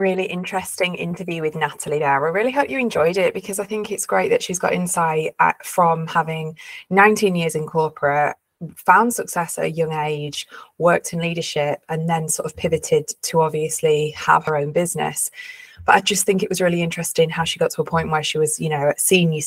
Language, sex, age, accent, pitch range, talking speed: English, female, 20-39, British, 155-200 Hz, 210 wpm